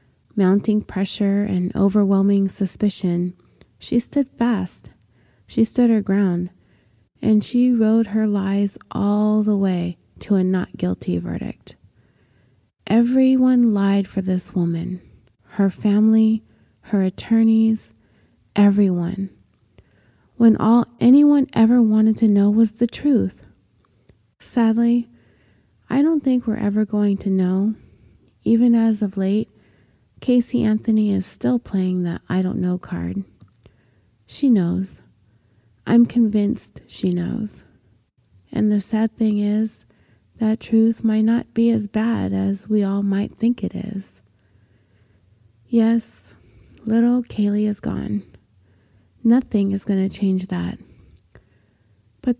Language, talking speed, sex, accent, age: English, 120 wpm, female, American, 20-39